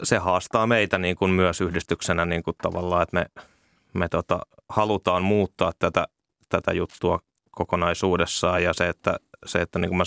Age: 20-39